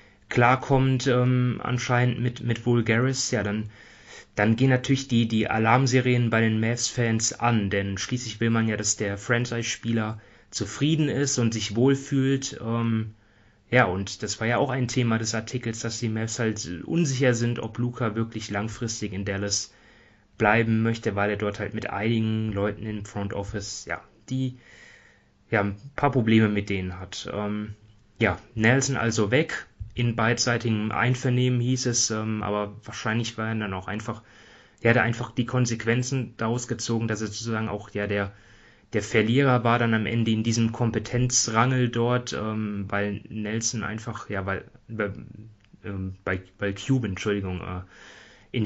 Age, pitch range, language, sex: 20-39, 105-120 Hz, German, male